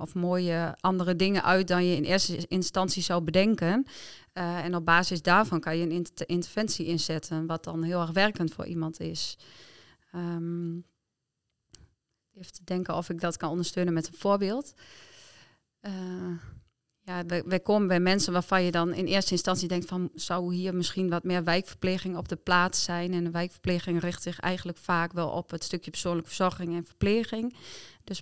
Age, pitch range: 20-39, 170-185 Hz